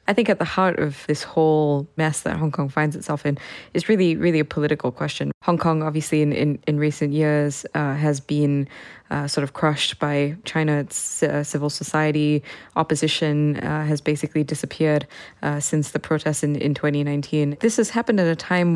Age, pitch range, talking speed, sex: 20-39, 150-160 Hz, 185 wpm, female